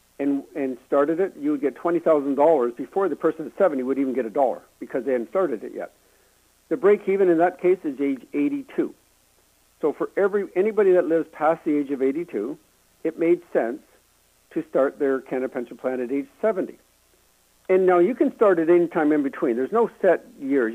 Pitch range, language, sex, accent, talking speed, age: 130-185 Hz, English, male, American, 195 wpm, 60-79